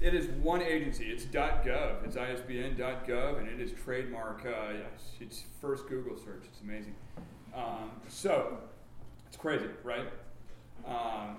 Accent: American